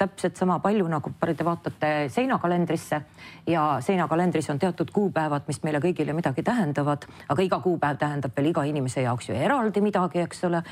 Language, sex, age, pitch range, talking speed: English, female, 40-59, 140-190 Hz, 170 wpm